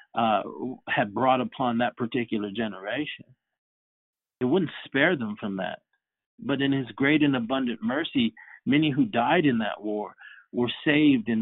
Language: English